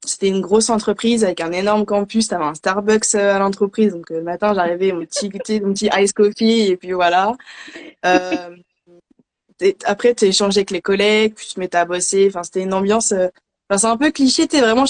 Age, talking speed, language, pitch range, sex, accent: 20-39, 205 wpm, French, 185-220 Hz, female, French